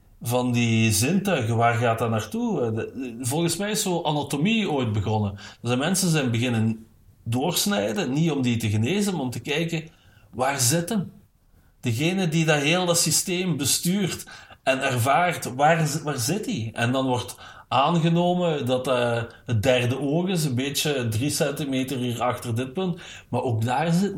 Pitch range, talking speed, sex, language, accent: 115-160 Hz, 160 wpm, male, Dutch, Dutch